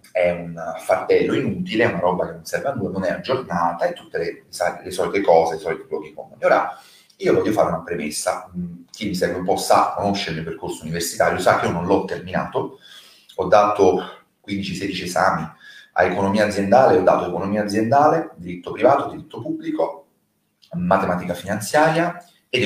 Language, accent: Italian, native